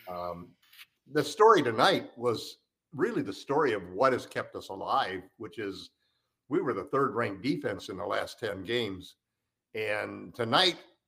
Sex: male